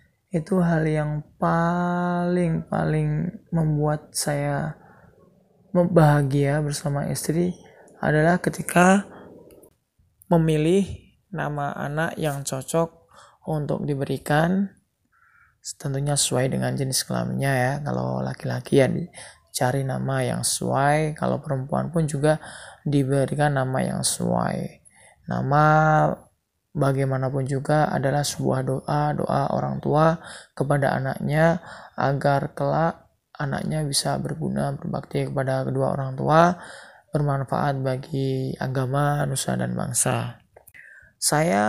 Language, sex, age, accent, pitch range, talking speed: Indonesian, male, 20-39, native, 135-165 Hz, 95 wpm